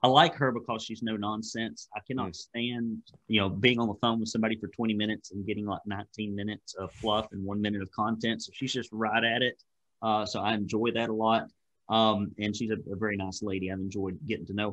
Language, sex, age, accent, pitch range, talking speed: English, male, 30-49, American, 100-115 Hz, 240 wpm